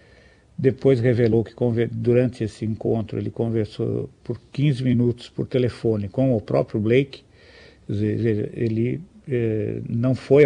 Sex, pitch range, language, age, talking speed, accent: male, 105-125 Hz, Portuguese, 50-69, 125 wpm, Brazilian